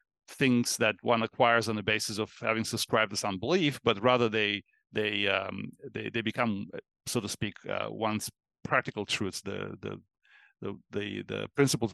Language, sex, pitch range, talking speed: English, male, 115-135 Hz, 170 wpm